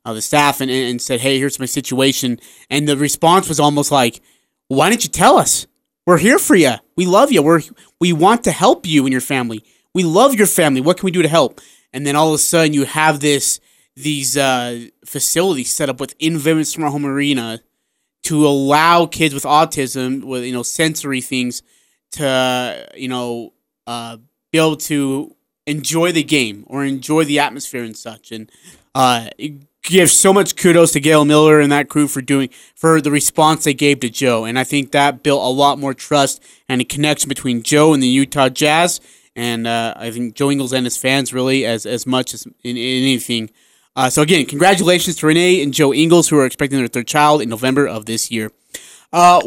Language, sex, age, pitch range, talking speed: English, male, 20-39, 130-160 Hz, 205 wpm